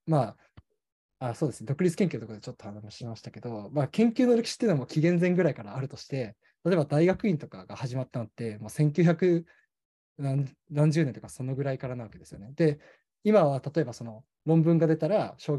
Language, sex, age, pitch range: Japanese, male, 20-39, 125-170 Hz